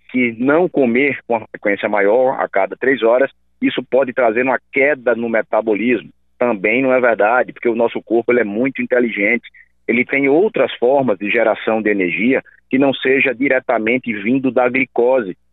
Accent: Brazilian